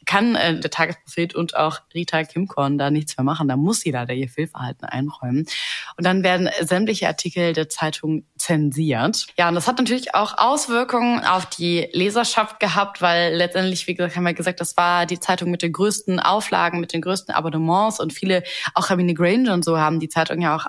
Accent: German